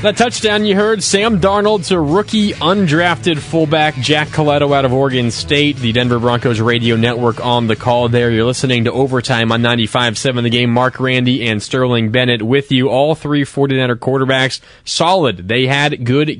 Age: 20-39